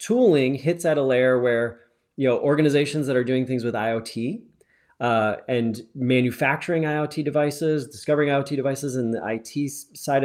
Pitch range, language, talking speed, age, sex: 120-145 Hz, English, 160 wpm, 30-49, male